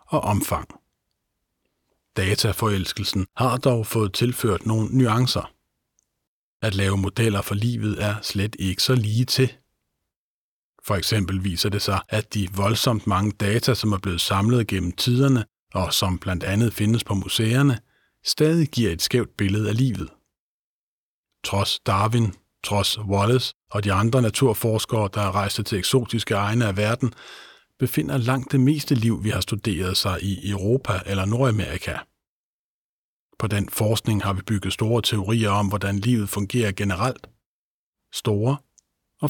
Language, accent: Danish, native